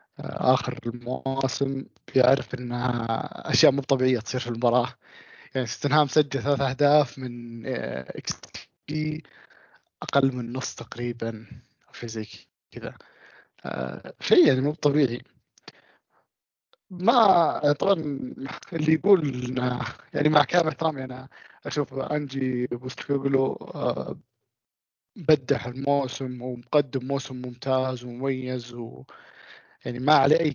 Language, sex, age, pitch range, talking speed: Arabic, male, 20-39, 125-145 Hz, 95 wpm